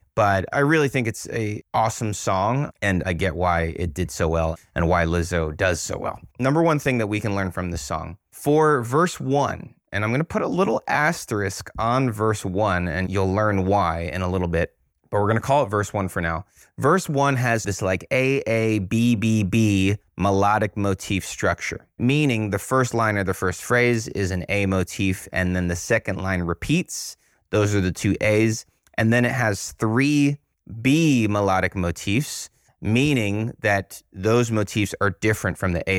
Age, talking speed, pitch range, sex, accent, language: 30-49, 190 wpm, 95-115 Hz, male, American, English